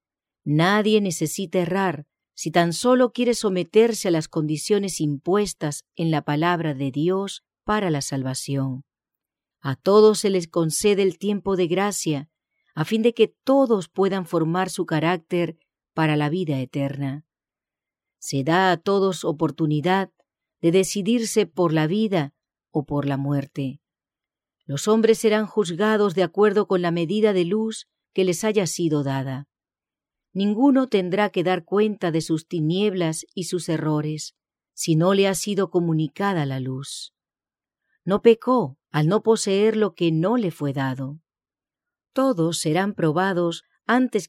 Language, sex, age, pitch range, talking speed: English, female, 40-59, 155-205 Hz, 145 wpm